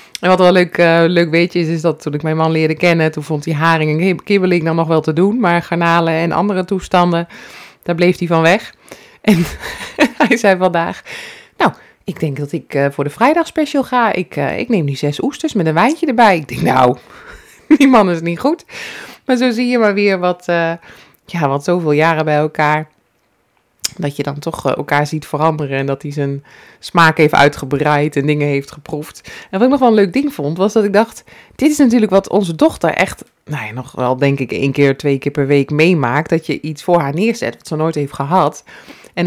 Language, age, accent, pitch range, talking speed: Dutch, 20-39, Dutch, 150-190 Hz, 225 wpm